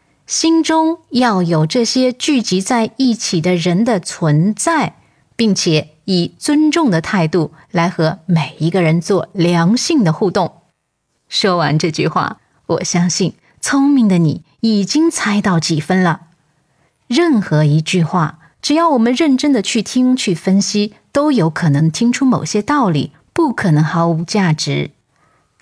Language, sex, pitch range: Chinese, female, 165-255 Hz